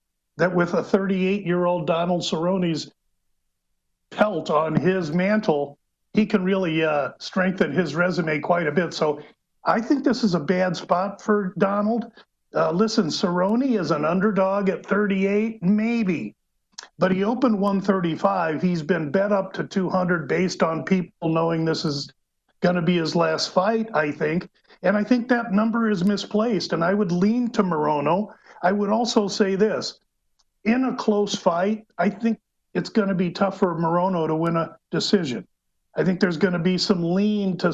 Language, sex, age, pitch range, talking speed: English, male, 50-69, 170-205 Hz, 170 wpm